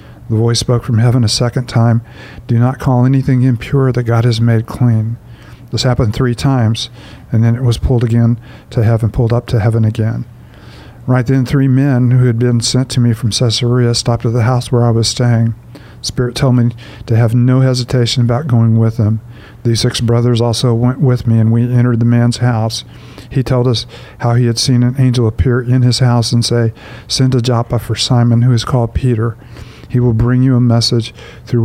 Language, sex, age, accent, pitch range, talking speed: English, male, 50-69, American, 115-125 Hz, 210 wpm